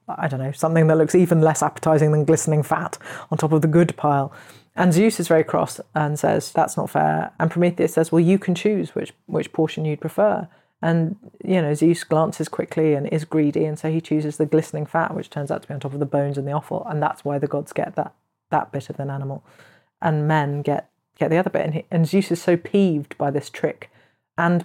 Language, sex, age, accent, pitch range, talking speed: English, female, 30-49, British, 150-180 Hz, 240 wpm